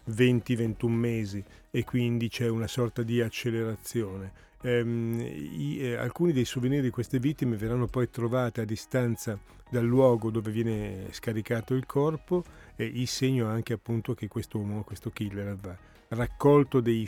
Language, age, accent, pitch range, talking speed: Italian, 40-59, native, 105-130 Hz, 145 wpm